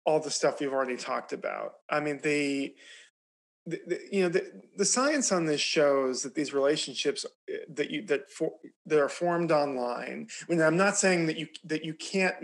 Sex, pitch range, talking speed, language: male, 130-175 Hz, 200 wpm, English